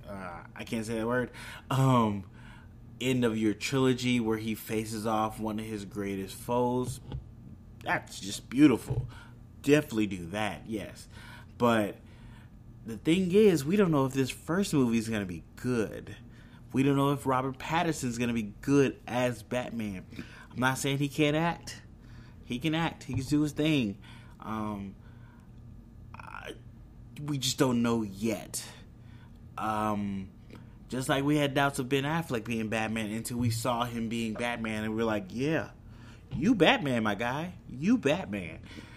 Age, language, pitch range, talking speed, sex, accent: 30-49, English, 110-130 Hz, 160 wpm, male, American